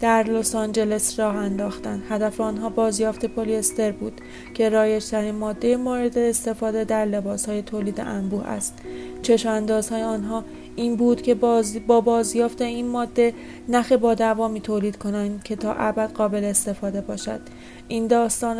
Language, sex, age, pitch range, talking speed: Persian, female, 30-49, 210-230 Hz, 150 wpm